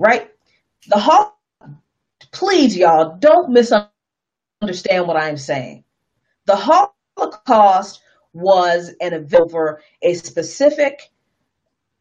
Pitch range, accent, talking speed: 165-240 Hz, American, 85 wpm